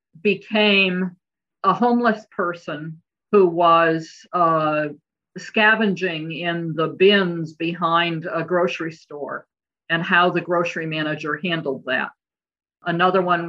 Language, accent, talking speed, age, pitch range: English, American, 105 wpm, 50-69, 160-195 Hz